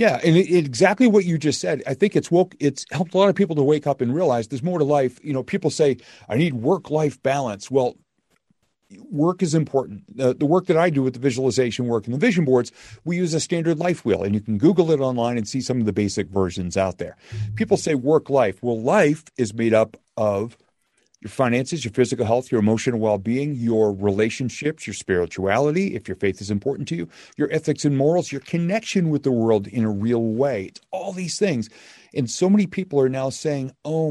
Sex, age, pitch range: male, 40-59, 110-150 Hz